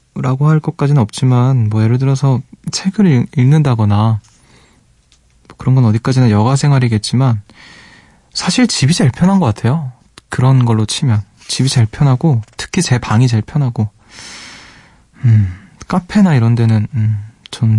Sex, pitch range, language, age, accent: male, 115-150 Hz, Korean, 20-39, native